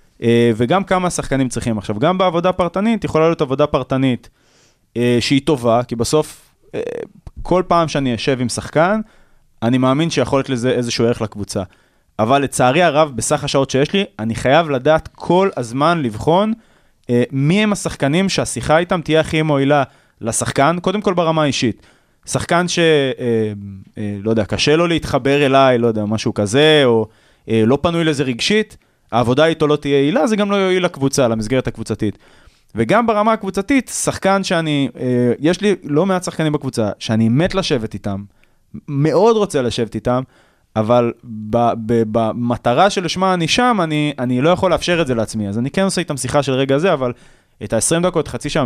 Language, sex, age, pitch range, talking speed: Hebrew, male, 20-39, 115-165 Hz, 175 wpm